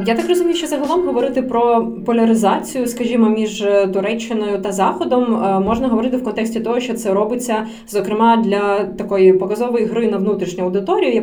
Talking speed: 160 wpm